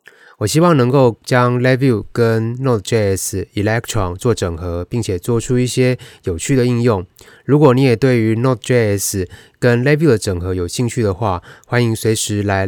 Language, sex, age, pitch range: Chinese, male, 20-39, 105-130 Hz